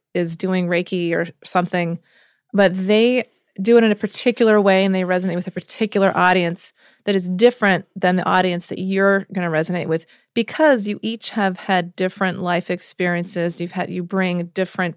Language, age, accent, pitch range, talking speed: English, 30-49, American, 175-205 Hz, 175 wpm